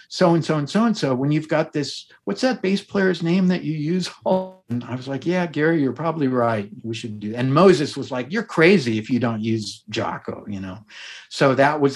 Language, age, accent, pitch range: English, 50-69, American, 115-160 Hz